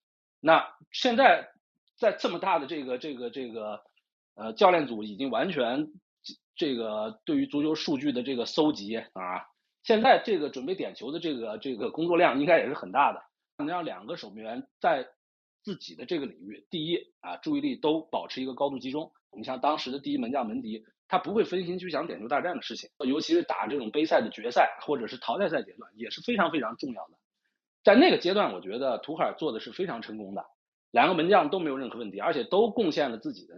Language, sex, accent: Chinese, male, native